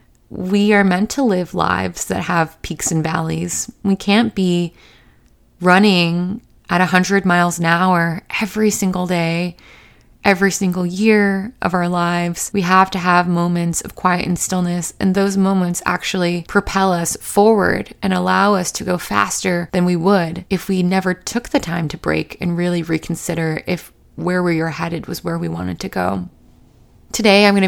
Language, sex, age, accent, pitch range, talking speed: English, female, 20-39, American, 170-195 Hz, 170 wpm